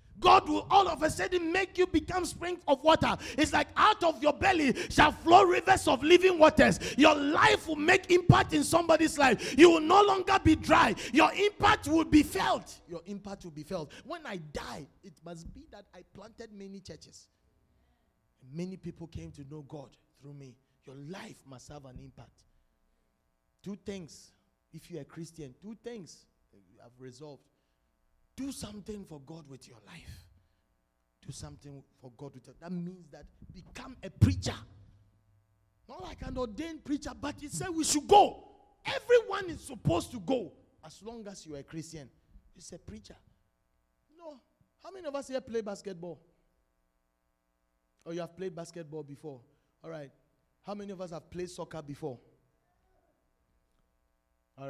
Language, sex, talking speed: English, male, 170 wpm